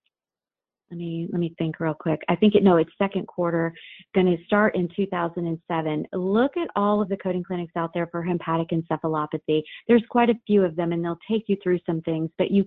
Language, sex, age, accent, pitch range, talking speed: English, female, 30-49, American, 170-200 Hz, 210 wpm